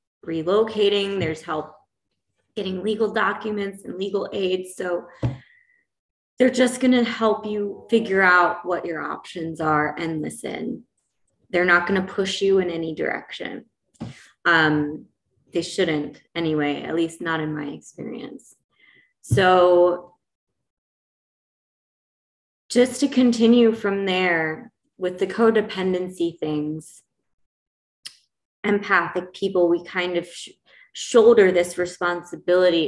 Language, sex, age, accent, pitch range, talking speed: English, female, 20-39, American, 160-205 Hz, 110 wpm